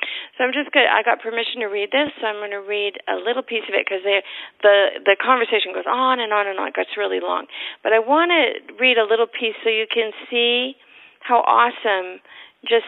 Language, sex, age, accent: English, female, 40-59, American